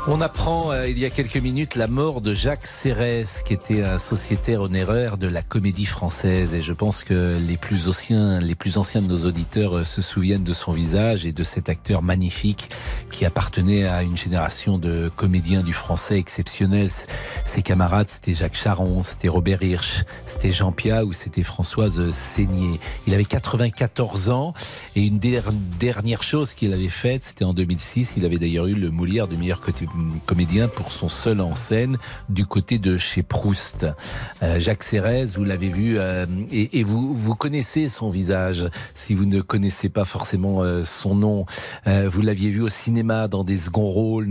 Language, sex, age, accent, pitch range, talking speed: French, male, 40-59, French, 90-110 Hz, 190 wpm